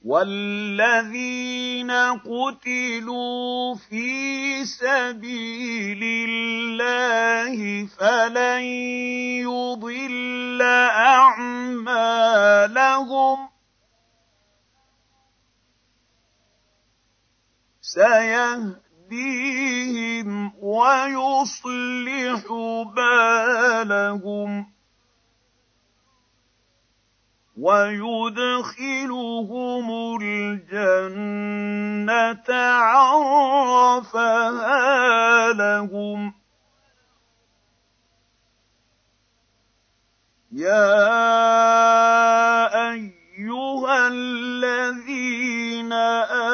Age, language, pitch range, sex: 50-69, Arabic, 205-250 Hz, male